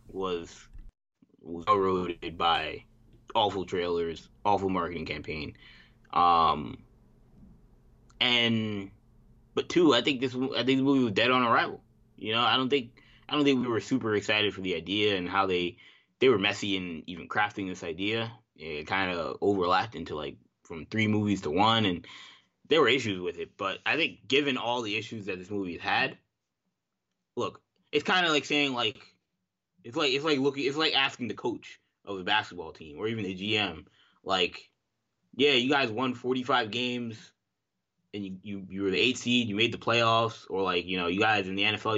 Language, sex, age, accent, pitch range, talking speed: English, male, 20-39, American, 100-125 Hz, 185 wpm